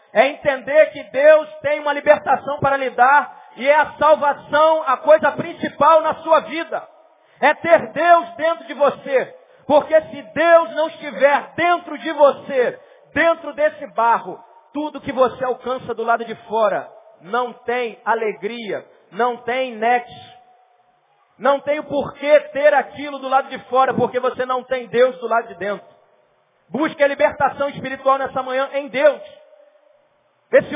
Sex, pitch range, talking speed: male, 230-295 Hz, 155 wpm